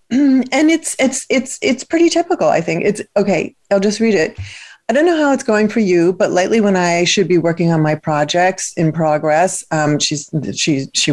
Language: English